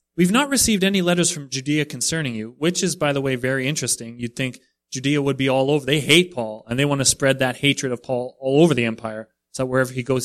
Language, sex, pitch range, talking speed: English, male, 115-160 Hz, 250 wpm